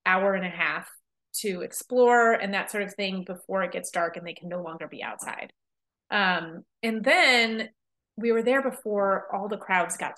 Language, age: English, 30-49